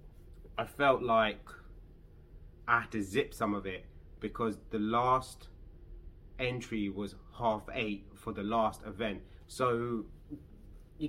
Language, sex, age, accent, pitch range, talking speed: English, male, 30-49, British, 95-120 Hz, 125 wpm